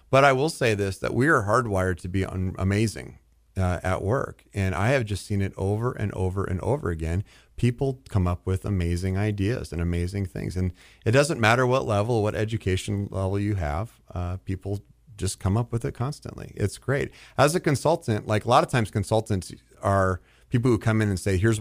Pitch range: 90-110 Hz